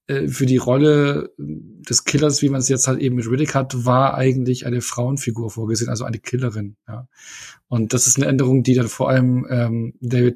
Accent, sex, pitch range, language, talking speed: German, male, 125-150 Hz, German, 195 wpm